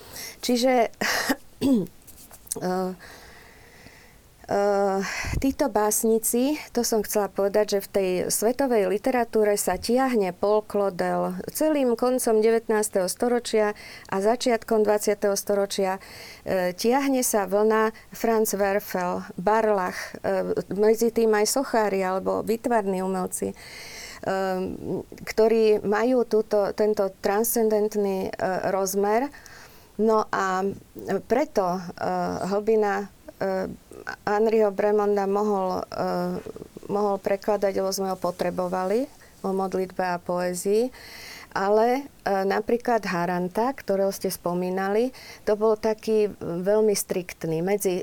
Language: Slovak